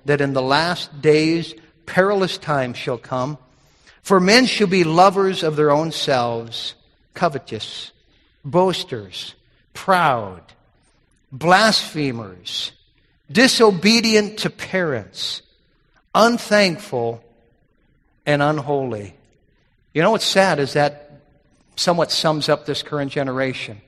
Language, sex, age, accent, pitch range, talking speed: English, male, 50-69, American, 145-200 Hz, 100 wpm